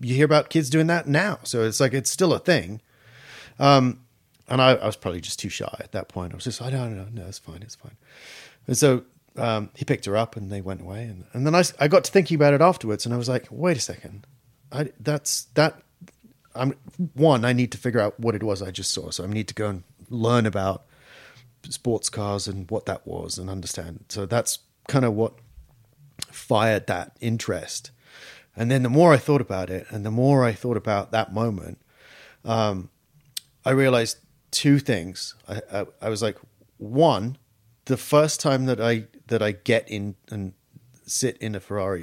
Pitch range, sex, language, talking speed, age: 105-135 Hz, male, English, 210 wpm, 30-49